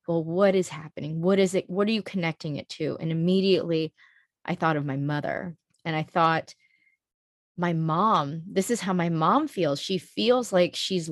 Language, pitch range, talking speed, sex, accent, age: English, 165-195 Hz, 190 wpm, female, American, 20-39